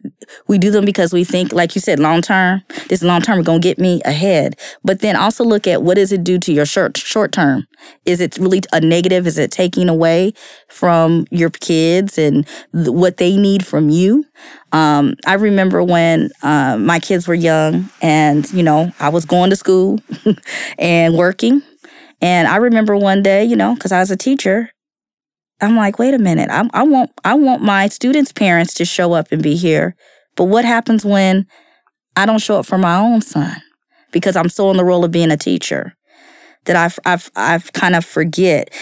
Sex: female